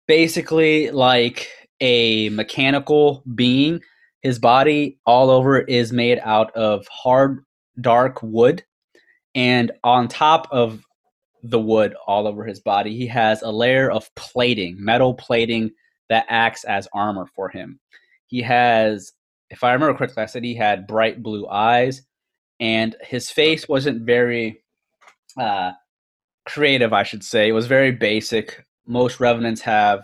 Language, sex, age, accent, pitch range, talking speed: English, male, 20-39, American, 110-125 Hz, 140 wpm